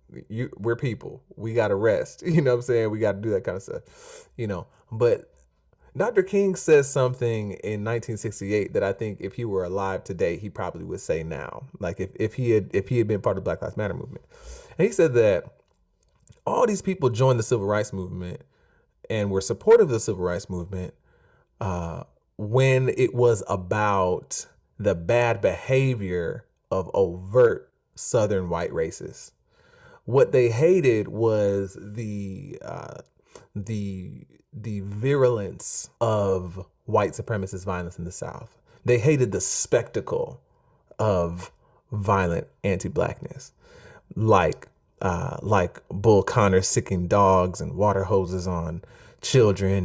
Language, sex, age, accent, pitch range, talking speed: English, male, 30-49, American, 95-130 Hz, 150 wpm